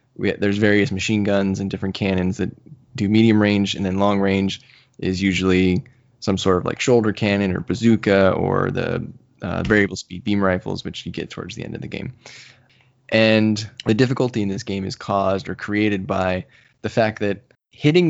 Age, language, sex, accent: 10-29, English, male, American